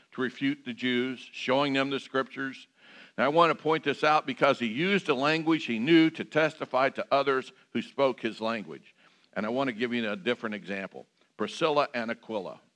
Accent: American